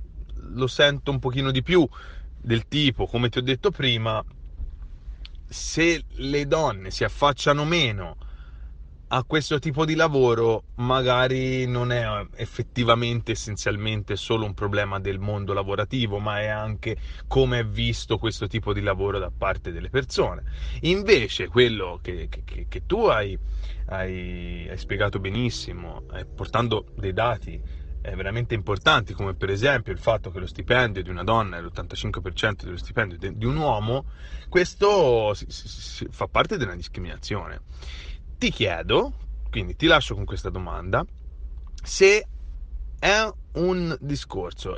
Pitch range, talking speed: 85-125 Hz, 130 wpm